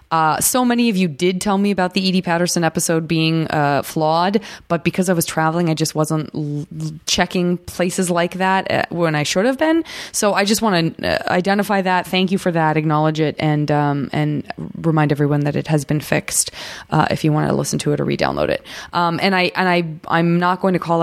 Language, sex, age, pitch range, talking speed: English, female, 20-39, 150-180 Hz, 230 wpm